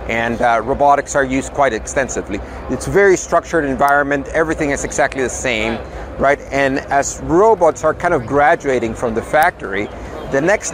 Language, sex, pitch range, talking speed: English, male, 135-165 Hz, 170 wpm